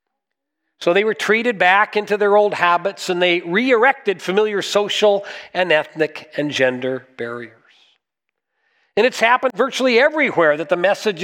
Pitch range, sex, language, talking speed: 170-245 Hz, male, English, 140 wpm